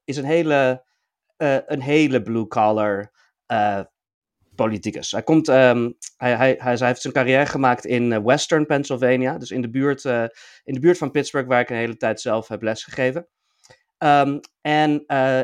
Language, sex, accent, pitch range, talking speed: Dutch, male, Dutch, 120-145 Hz, 165 wpm